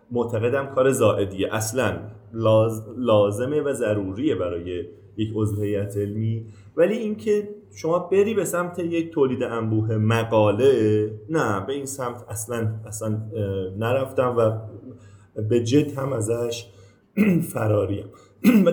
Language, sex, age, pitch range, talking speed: Persian, male, 30-49, 105-140 Hz, 110 wpm